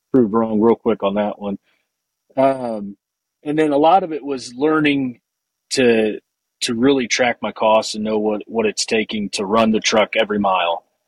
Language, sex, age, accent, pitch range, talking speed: English, male, 30-49, American, 100-120 Hz, 180 wpm